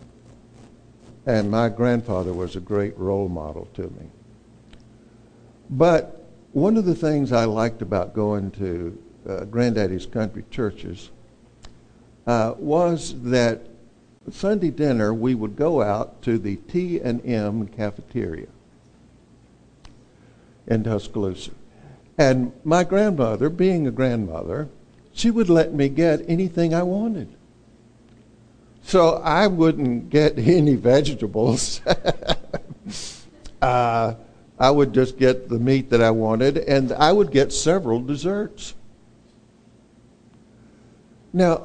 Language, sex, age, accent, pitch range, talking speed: English, male, 60-79, American, 115-170 Hz, 110 wpm